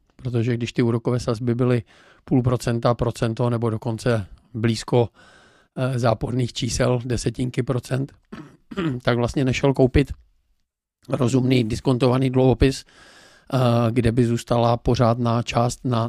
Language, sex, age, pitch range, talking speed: Czech, male, 50-69, 115-125 Hz, 110 wpm